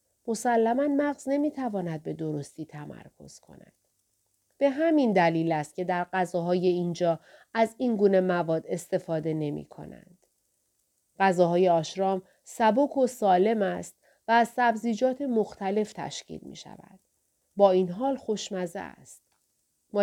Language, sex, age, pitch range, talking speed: Persian, female, 30-49, 180-245 Hz, 130 wpm